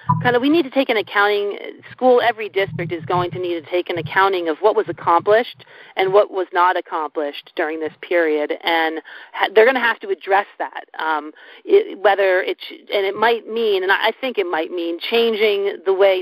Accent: American